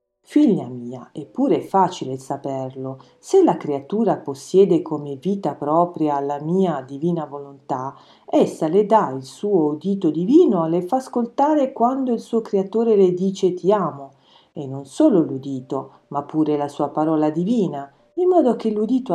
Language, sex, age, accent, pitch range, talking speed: Italian, female, 40-59, native, 145-225 Hz, 155 wpm